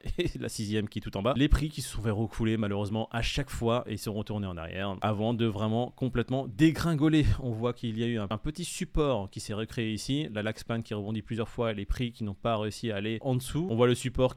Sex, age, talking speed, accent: male, 30-49, 265 wpm, French